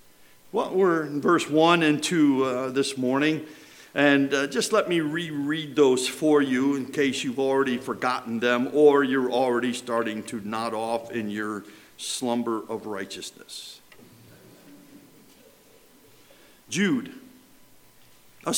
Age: 50-69